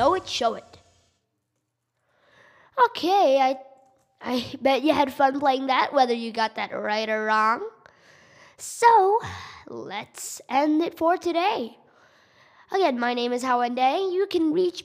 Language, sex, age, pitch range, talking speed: English, female, 10-29, 230-330 Hz, 135 wpm